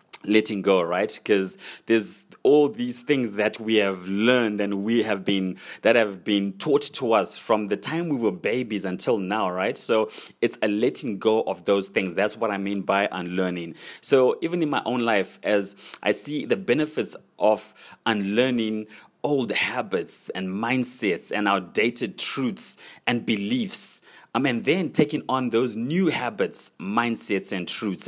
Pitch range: 100-115 Hz